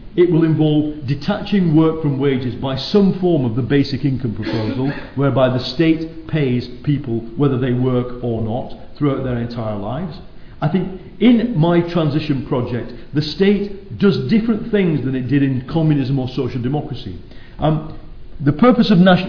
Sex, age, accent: male, 50-69, British